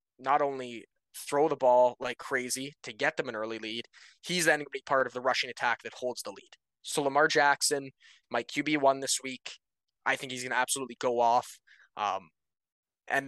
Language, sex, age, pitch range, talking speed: English, male, 20-39, 125-145 Hz, 205 wpm